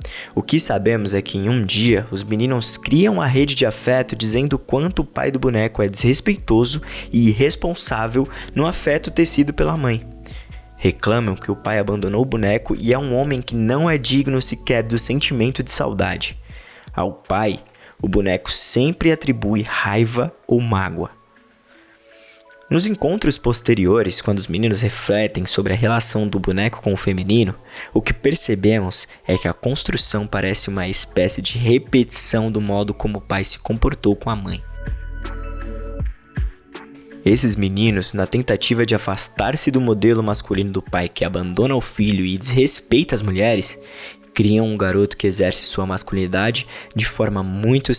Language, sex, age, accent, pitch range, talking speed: Portuguese, male, 20-39, Brazilian, 100-130 Hz, 155 wpm